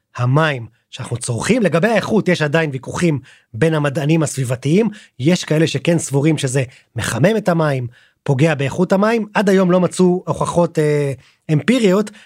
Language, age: Hebrew, 30-49